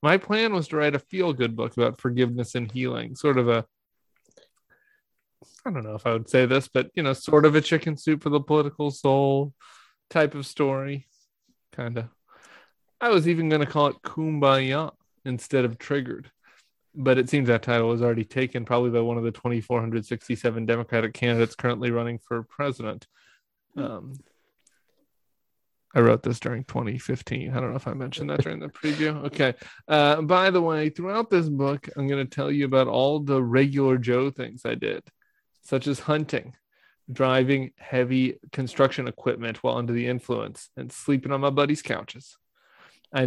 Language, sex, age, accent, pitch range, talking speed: English, male, 20-39, American, 125-150 Hz, 175 wpm